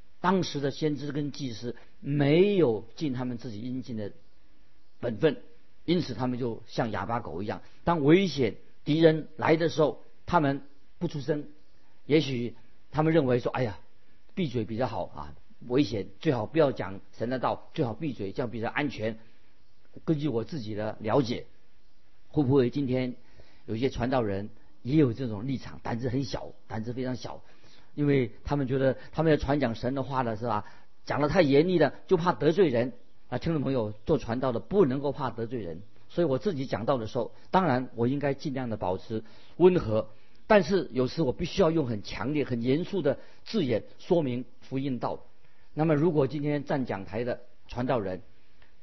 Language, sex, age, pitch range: Chinese, male, 50-69, 115-155 Hz